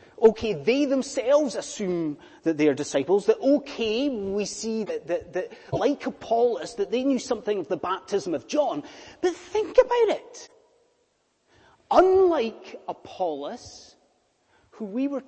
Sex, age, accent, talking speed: male, 30-49, British, 140 wpm